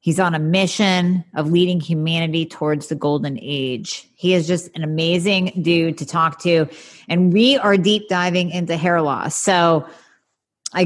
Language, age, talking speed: English, 30-49, 165 wpm